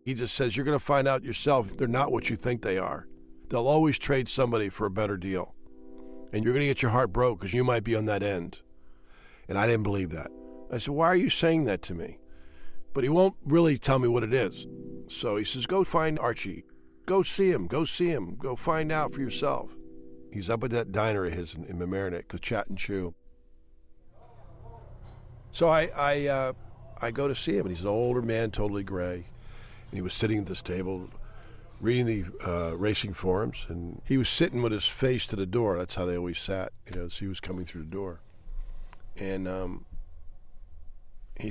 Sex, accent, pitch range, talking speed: male, American, 90-125 Hz, 210 wpm